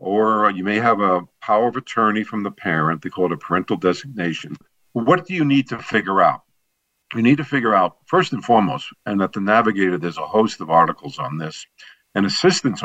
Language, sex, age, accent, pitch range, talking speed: English, male, 50-69, American, 95-125 Hz, 210 wpm